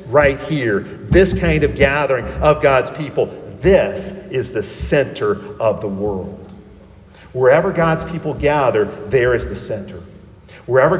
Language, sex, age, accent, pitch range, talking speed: English, male, 50-69, American, 115-185 Hz, 135 wpm